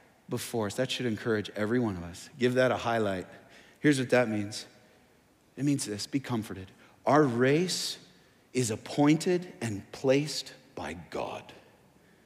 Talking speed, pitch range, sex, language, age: 145 wpm, 115-175 Hz, male, English, 40-59